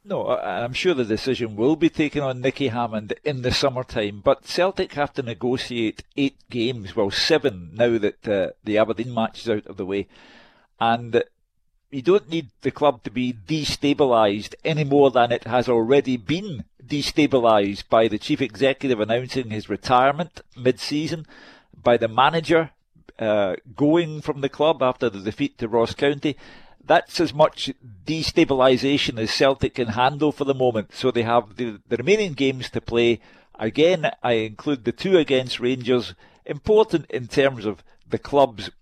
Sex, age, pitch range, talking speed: male, 50-69, 120-145 Hz, 165 wpm